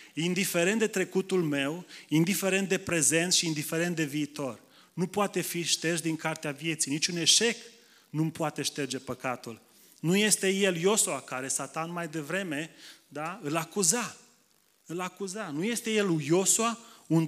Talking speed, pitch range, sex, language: 145 wpm, 140-190 Hz, male, Romanian